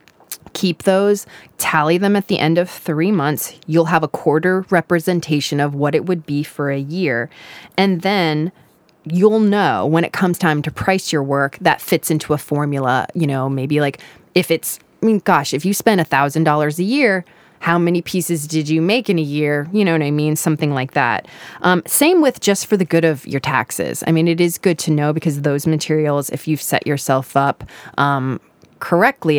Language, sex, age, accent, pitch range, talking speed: English, female, 20-39, American, 145-185 Hz, 200 wpm